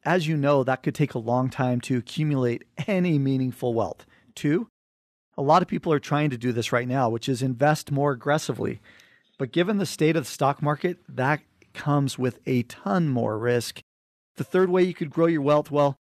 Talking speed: 205 wpm